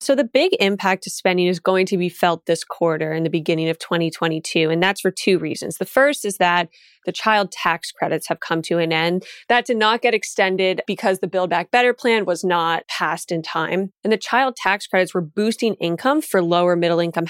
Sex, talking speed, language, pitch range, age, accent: female, 220 wpm, English, 170-200 Hz, 20-39, American